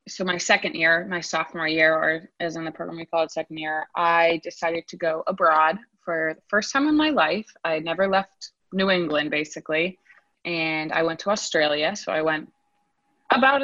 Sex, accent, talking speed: female, American, 195 wpm